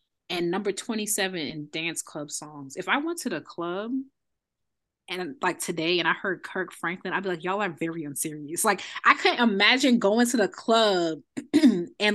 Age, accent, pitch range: 20-39, American, 170-230 Hz